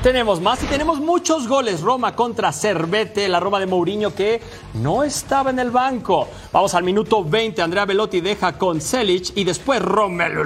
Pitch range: 175-250 Hz